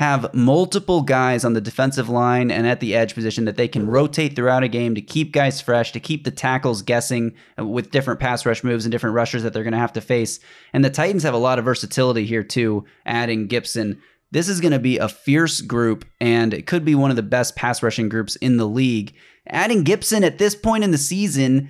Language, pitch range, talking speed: English, 115-145 Hz, 235 wpm